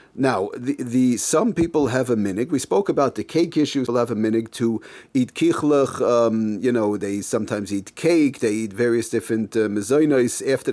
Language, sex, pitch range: English, male, 115-155 Hz